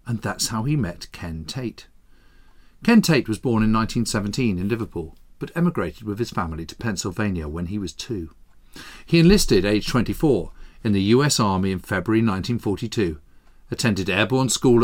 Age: 50-69